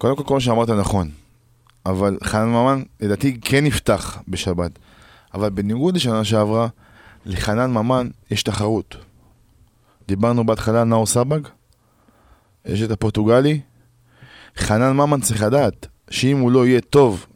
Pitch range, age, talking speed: 105-140 Hz, 20-39, 125 wpm